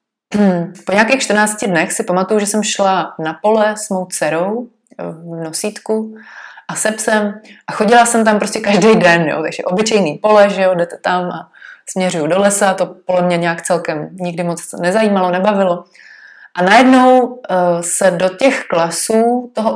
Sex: female